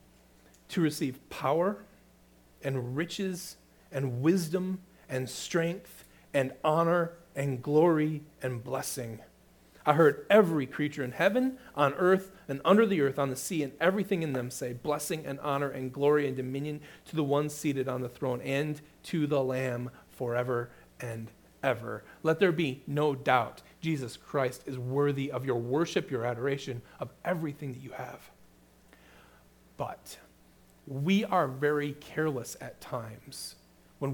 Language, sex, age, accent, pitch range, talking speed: English, male, 40-59, American, 120-165 Hz, 145 wpm